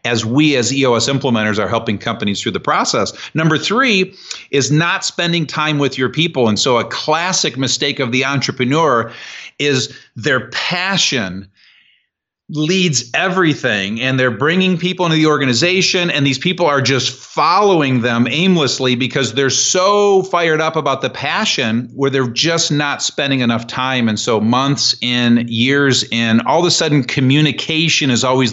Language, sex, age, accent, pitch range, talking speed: English, male, 40-59, American, 120-160 Hz, 160 wpm